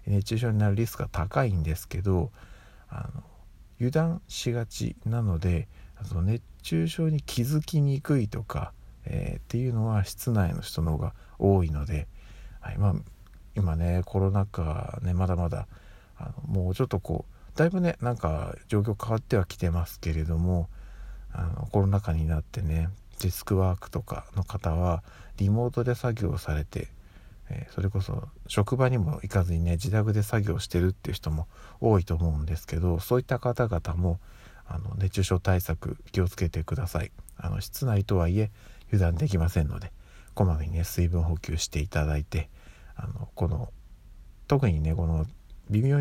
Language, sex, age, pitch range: Japanese, male, 50-69, 85-105 Hz